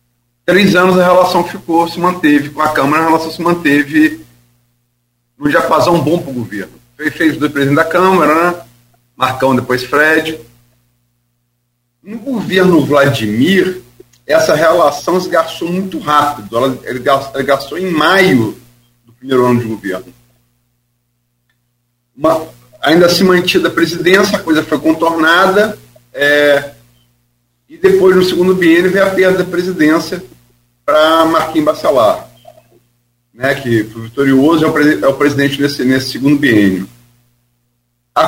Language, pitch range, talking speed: Portuguese, 120-175 Hz, 135 wpm